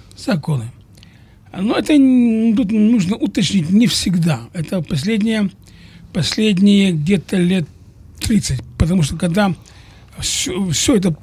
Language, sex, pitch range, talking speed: English, male, 155-215 Hz, 100 wpm